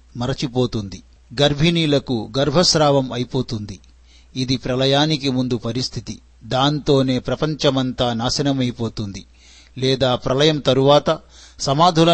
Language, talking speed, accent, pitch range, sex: Telugu, 75 wpm, native, 125-150 Hz, male